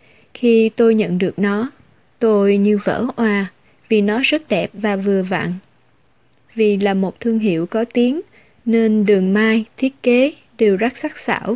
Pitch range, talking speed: 205-245 Hz, 165 wpm